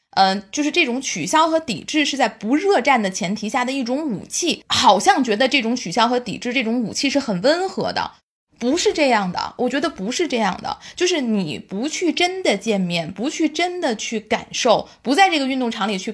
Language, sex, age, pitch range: Chinese, female, 20-39, 220-300 Hz